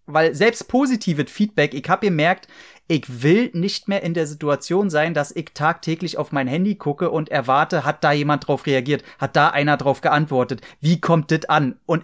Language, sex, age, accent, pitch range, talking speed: German, male, 30-49, German, 150-185 Hz, 195 wpm